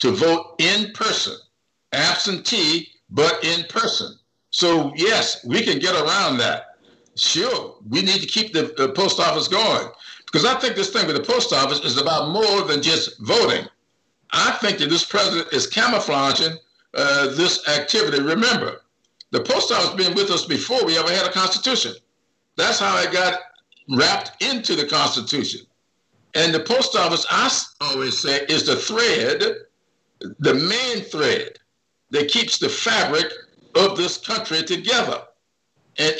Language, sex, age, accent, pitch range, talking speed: English, male, 60-79, American, 170-225 Hz, 155 wpm